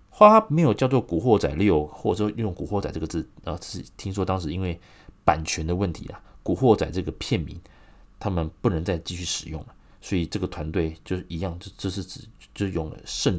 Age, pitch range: 30-49, 80-100 Hz